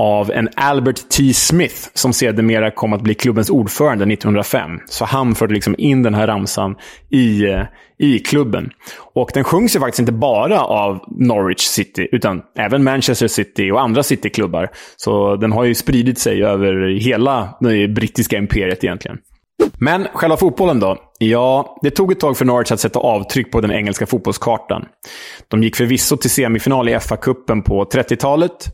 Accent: Norwegian